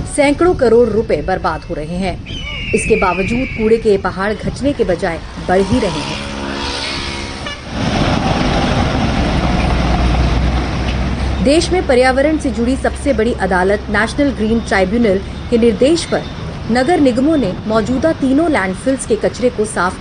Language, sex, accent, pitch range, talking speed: Hindi, female, native, 185-260 Hz, 130 wpm